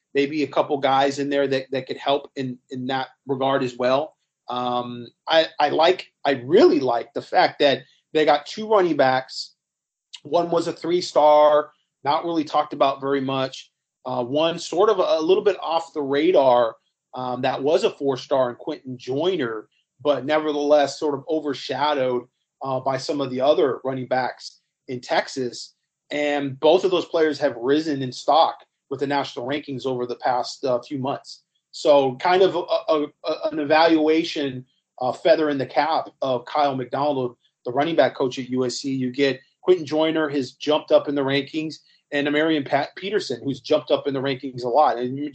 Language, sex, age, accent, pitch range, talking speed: English, male, 30-49, American, 135-160 Hz, 185 wpm